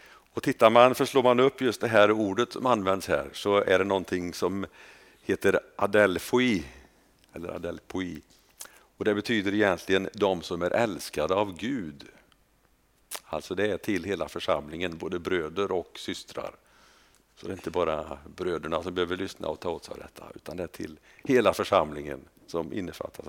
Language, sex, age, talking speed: Swedish, male, 50-69, 165 wpm